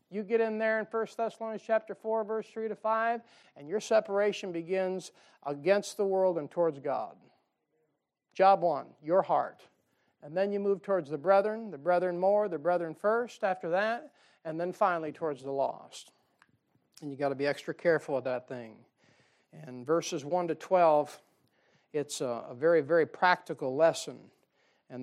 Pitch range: 160-220 Hz